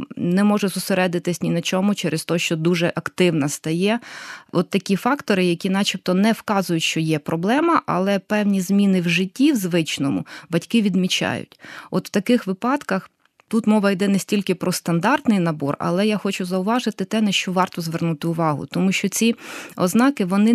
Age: 20-39